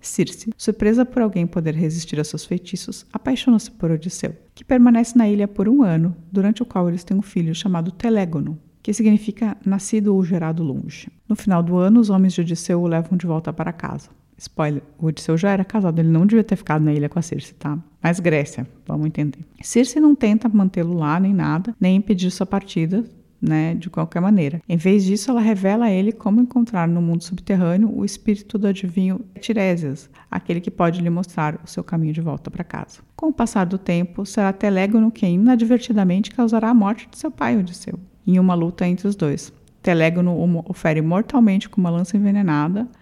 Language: Portuguese